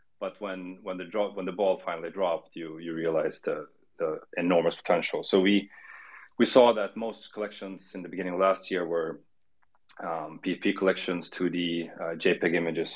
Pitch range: 85-100 Hz